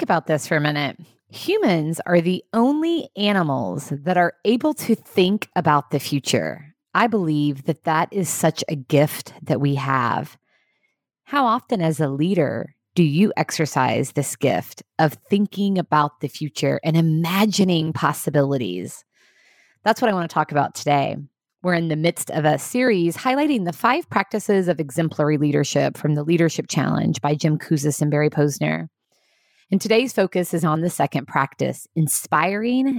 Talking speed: 160 wpm